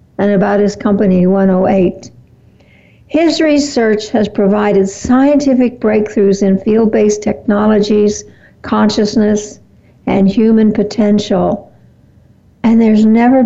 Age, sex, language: 60-79, female, English